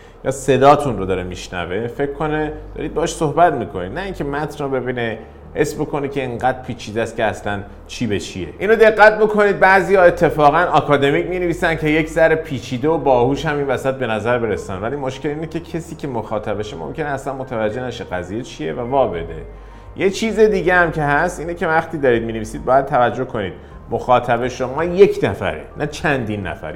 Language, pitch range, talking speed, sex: Persian, 120-170 Hz, 185 wpm, male